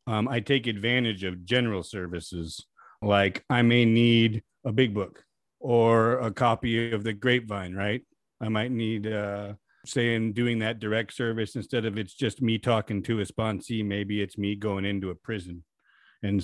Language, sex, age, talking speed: English, male, 40-59, 175 wpm